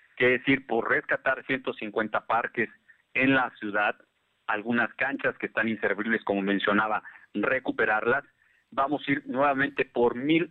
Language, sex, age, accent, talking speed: Spanish, male, 50-69, Mexican, 135 wpm